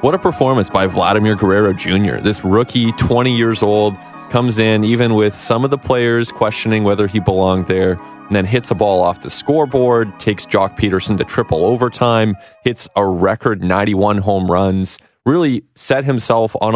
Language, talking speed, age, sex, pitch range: English, 175 wpm, 20-39, male, 95-115 Hz